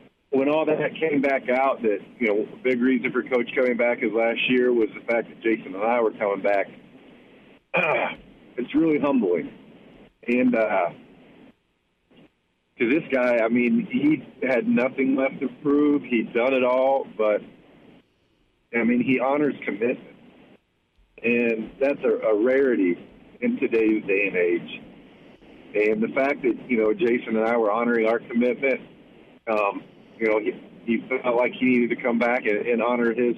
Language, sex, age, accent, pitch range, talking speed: English, male, 50-69, American, 115-135 Hz, 170 wpm